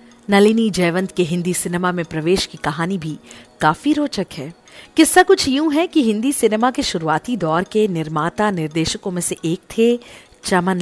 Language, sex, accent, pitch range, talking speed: Hindi, female, native, 170-255 Hz, 170 wpm